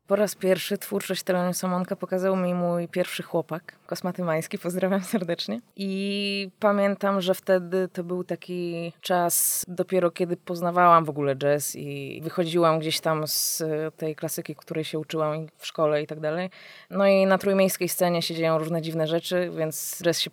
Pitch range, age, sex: 160-190 Hz, 20-39, female